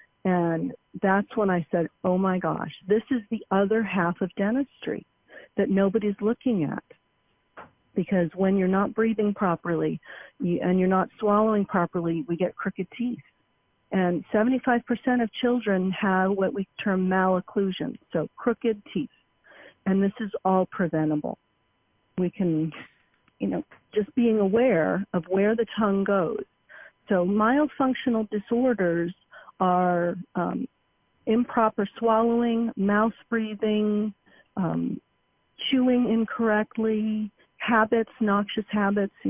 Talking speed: 120 wpm